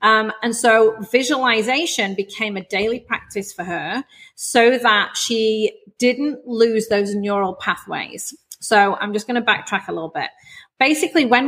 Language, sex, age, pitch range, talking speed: English, female, 30-49, 200-260 Hz, 150 wpm